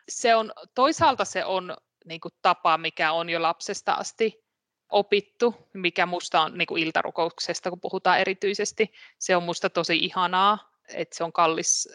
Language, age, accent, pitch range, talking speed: Finnish, 30-49, native, 170-210 Hz, 150 wpm